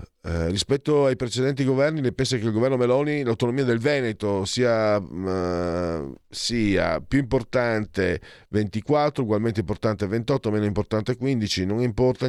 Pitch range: 90-130 Hz